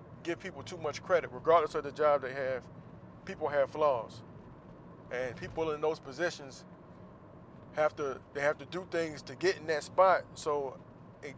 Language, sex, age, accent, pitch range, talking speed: English, male, 20-39, American, 135-160 Hz, 175 wpm